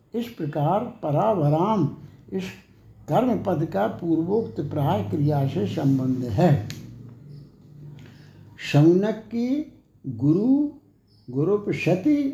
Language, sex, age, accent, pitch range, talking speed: Hindi, male, 60-79, native, 145-200 Hz, 85 wpm